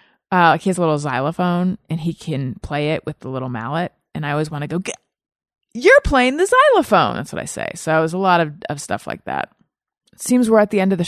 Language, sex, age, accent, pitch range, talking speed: English, female, 30-49, American, 150-200 Hz, 260 wpm